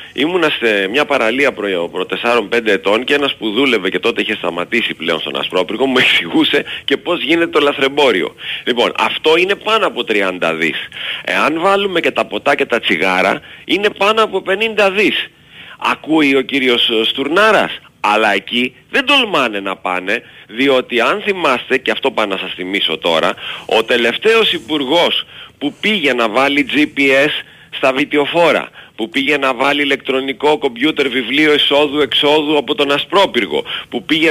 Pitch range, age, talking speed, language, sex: 120-155 Hz, 40-59, 155 wpm, Greek, male